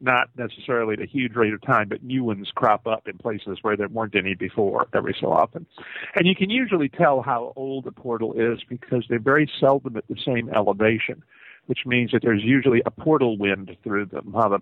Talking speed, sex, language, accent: 220 wpm, male, English, American